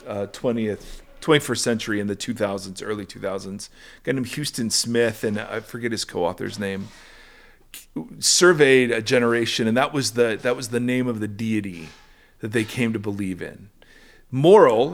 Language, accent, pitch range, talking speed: English, American, 105-130 Hz, 165 wpm